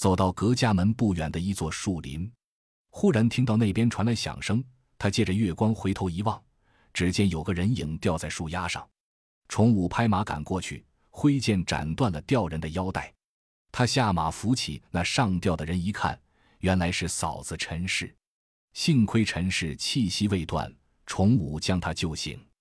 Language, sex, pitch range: Chinese, male, 80-110 Hz